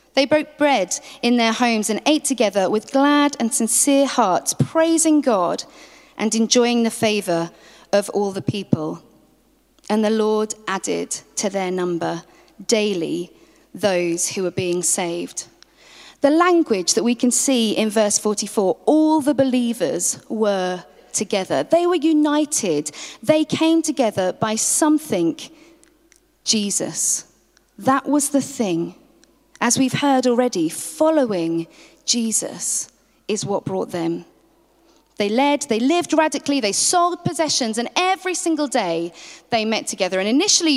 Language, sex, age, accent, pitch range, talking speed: English, female, 40-59, British, 190-290 Hz, 135 wpm